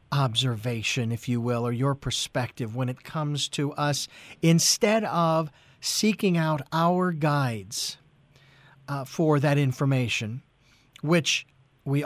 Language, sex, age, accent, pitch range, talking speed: English, male, 50-69, American, 140-170 Hz, 120 wpm